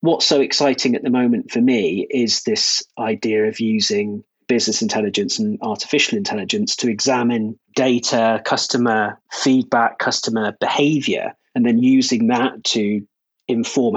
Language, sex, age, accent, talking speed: English, male, 30-49, British, 135 wpm